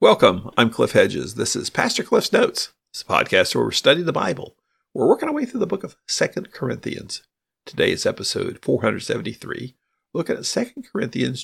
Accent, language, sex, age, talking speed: American, English, male, 50-69, 195 wpm